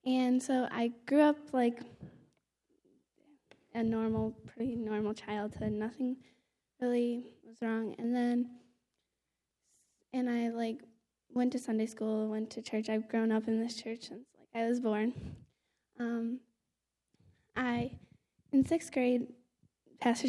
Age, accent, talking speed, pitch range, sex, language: 10-29, American, 130 wpm, 225-255 Hz, female, English